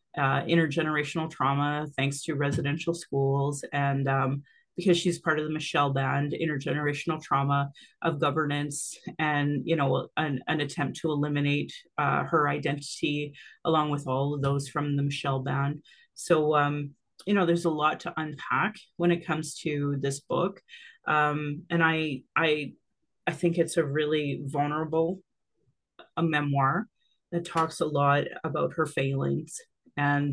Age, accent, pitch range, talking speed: 30-49, American, 140-165 Hz, 150 wpm